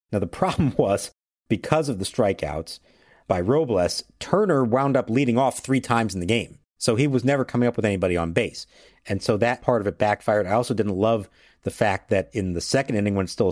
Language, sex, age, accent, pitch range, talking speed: English, male, 50-69, American, 100-130 Hz, 225 wpm